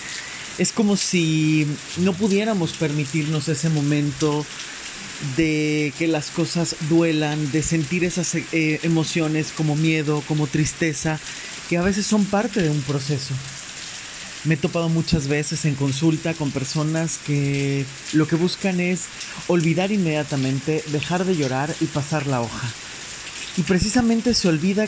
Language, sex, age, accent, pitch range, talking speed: Spanish, male, 30-49, Mexican, 140-175 Hz, 135 wpm